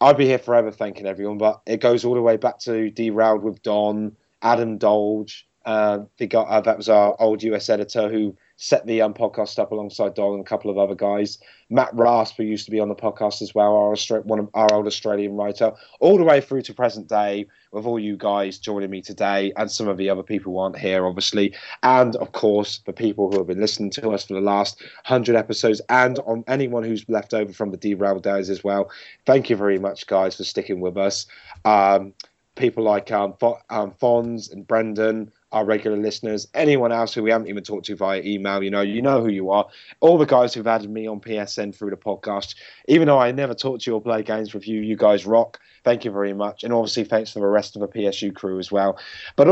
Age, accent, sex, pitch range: 30-49, British, male, 100-115 Hz